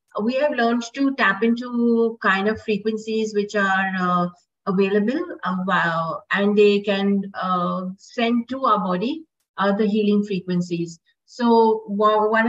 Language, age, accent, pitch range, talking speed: English, 50-69, Indian, 195-235 Hz, 130 wpm